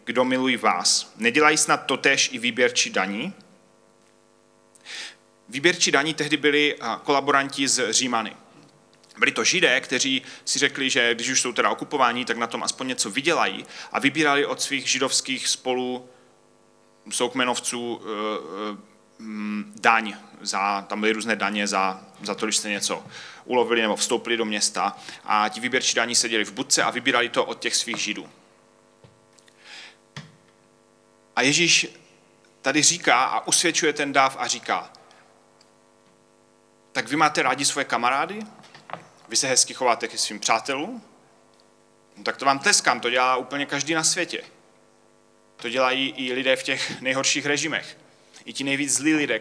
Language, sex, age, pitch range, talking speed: Czech, male, 30-49, 105-135 Hz, 140 wpm